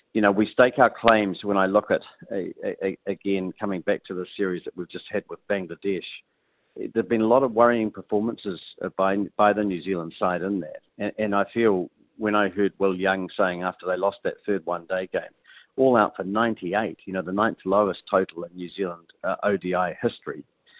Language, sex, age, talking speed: English, male, 50-69, 200 wpm